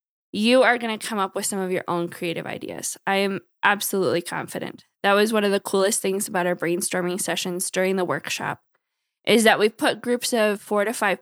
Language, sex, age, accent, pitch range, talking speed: English, female, 10-29, American, 190-225 Hz, 215 wpm